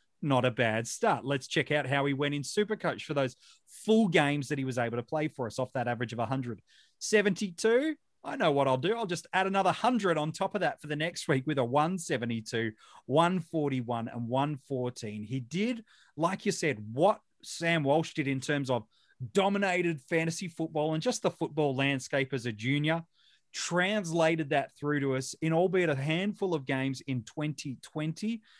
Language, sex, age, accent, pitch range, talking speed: English, male, 30-49, Australian, 140-185 Hz, 190 wpm